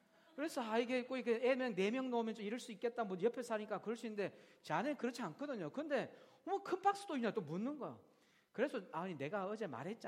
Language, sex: Korean, male